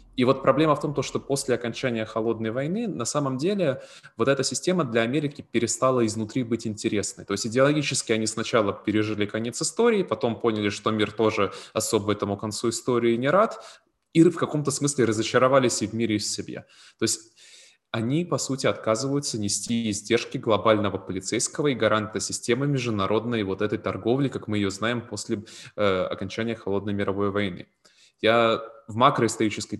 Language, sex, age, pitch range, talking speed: Ukrainian, male, 20-39, 105-130 Hz, 165 wpm